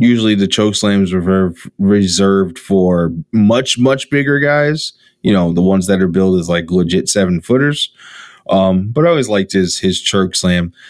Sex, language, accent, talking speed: male, English, American, 170 wpm